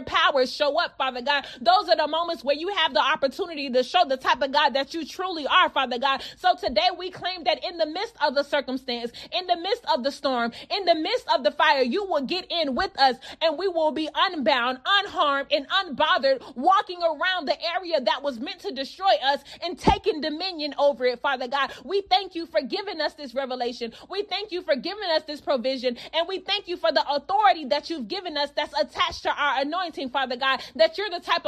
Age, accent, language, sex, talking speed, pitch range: 30-49, American, English, female, 225 wpm, 280-350 Hz